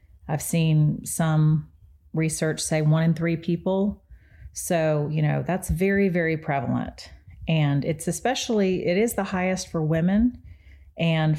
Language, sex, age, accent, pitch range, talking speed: English, female, 40-59, American, 140-170 Hz, 135 wpm